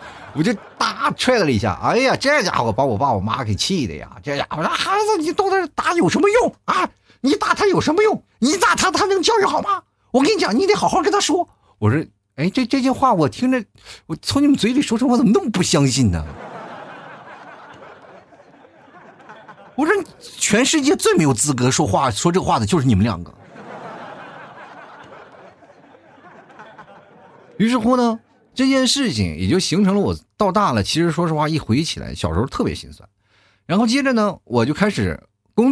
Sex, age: male, 50-69